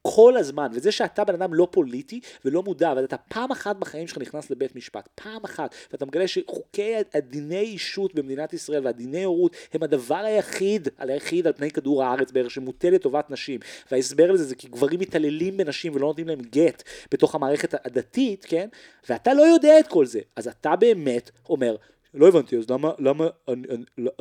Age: 30-49